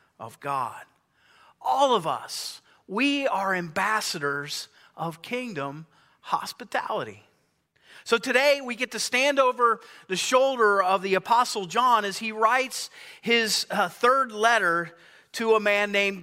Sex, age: male, 40-59